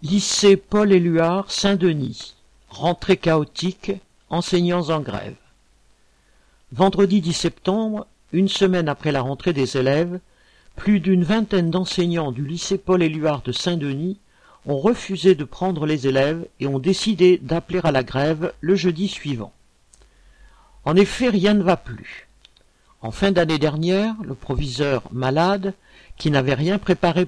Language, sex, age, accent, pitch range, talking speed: French, male, 50-69, French, 145-195 Hz, 130 wpm